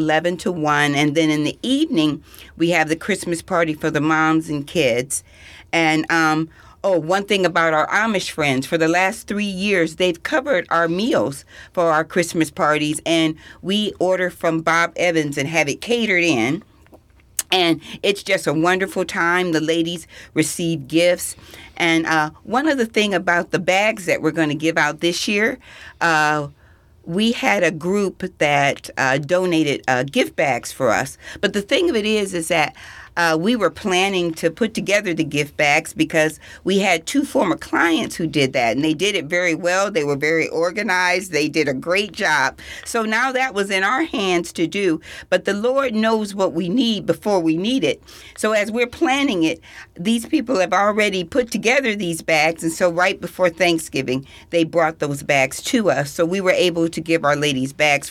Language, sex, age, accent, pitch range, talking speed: English, female, 40-59, American, 155-195 Hz, 190 wpm